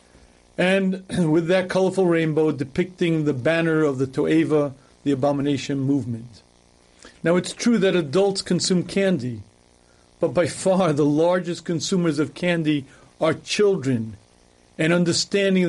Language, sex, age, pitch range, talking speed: English, male, 40-59, 145-180 Hz, 125 wpm